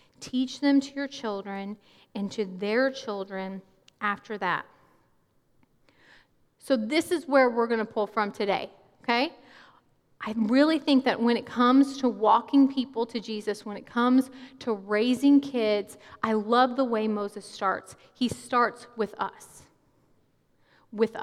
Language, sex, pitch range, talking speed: English, female, 210-260 Hz, 145 wpm